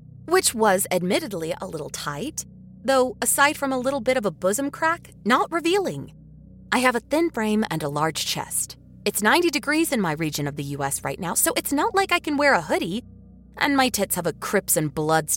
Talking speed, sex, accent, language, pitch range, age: 215 wpm, female, American, English, 155-260 Hz, 20-39